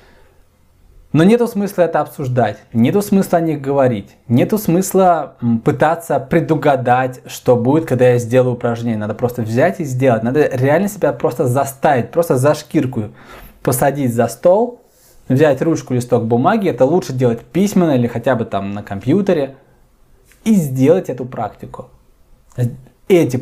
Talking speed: 140 wpm